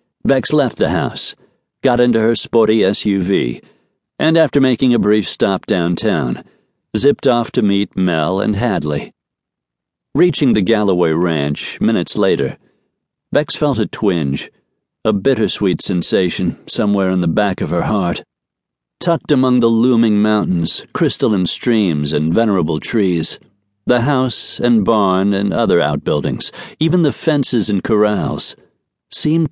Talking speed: 135 wpm